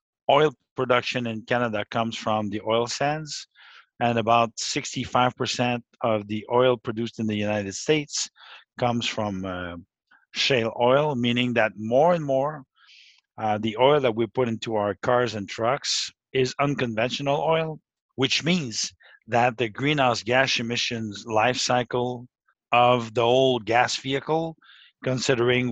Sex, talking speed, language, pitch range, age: male, 140 wpm, English, 110-130 Hz, 50-69